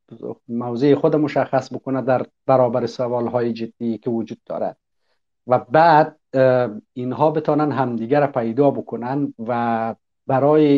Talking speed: 110 wpm